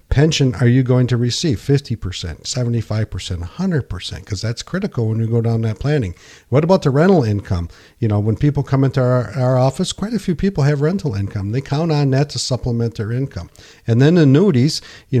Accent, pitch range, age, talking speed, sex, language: American, 110-140 Hz, 50-69, 200 wpm, male, English